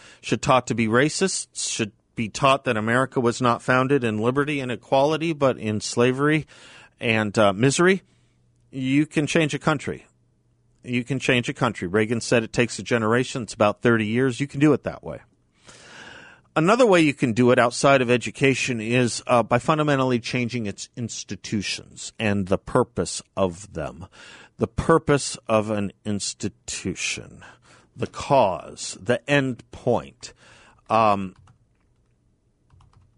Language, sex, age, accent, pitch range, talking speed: English, male, 50-69, American, 110-140 Hz, 145 wpm